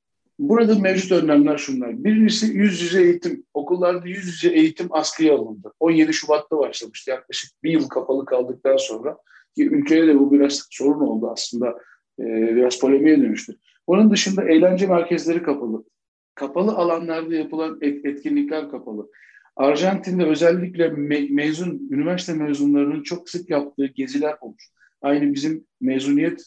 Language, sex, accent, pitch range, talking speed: Turkish, male, native, 145-220 Hz, 130 wpm